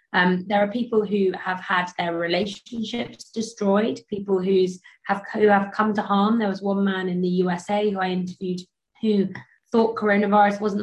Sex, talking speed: female, 165 wpm